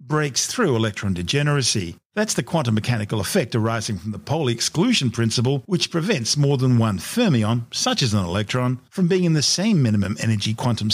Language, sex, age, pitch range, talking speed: English, male, 50-69, 110-150 Hz, 180 wpm